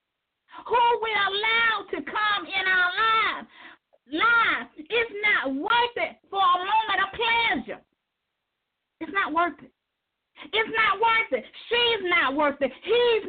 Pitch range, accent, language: 315-410 Hz, American, English